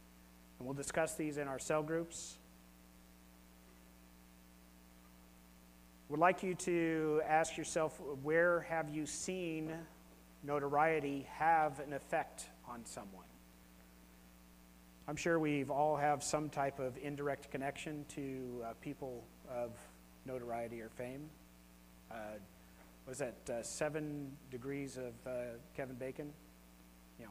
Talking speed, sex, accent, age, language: 115 wpm, male, American, 30-49, English